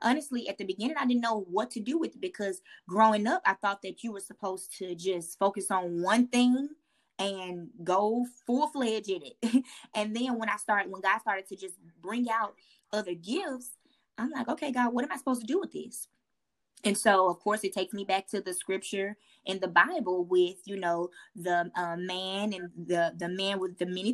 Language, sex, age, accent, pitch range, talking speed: English, female, 20-39, American, 185-230 Hz, 210 wpm